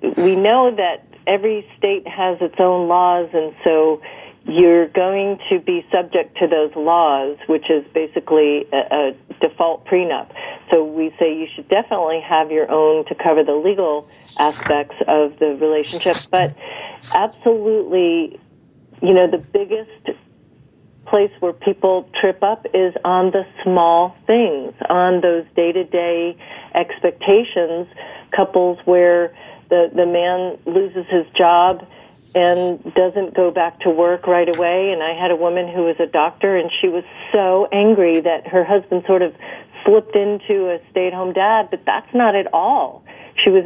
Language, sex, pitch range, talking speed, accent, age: English, female, 165-195 Hz, 150 wpm, American, 40-59